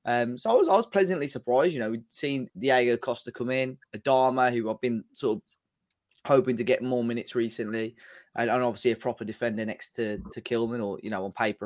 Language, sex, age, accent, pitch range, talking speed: English, male, 20-39, British, 115-135 Hz, 220 wpm